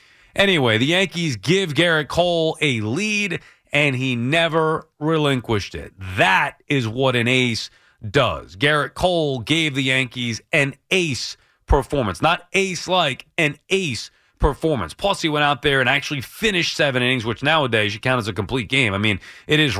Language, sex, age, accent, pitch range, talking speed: English, male, 30-49, American, 125-175 Hz, 165 wpm